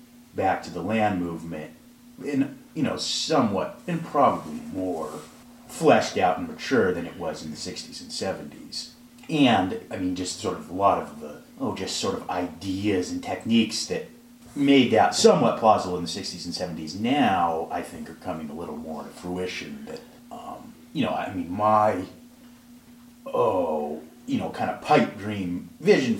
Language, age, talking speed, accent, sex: English, 30-49, 170 wpm, American, male